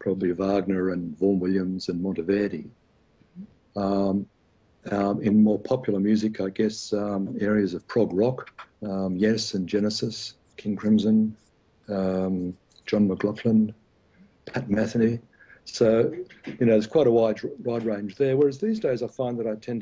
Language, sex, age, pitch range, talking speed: English, male, 60-79, 95-110 Hz, 150 wpm